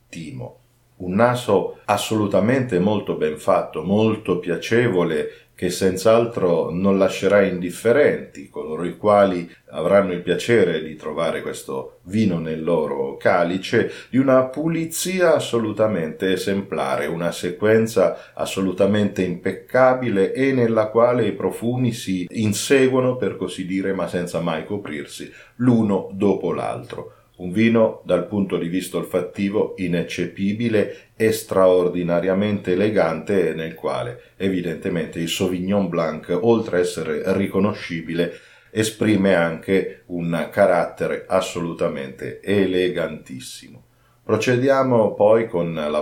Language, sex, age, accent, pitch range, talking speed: Italian, male, 40-59, native, 90-115 Hz, 110 wpm